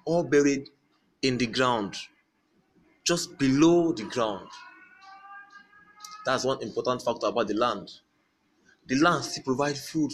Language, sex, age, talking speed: English, male, 20-39, 120 wpm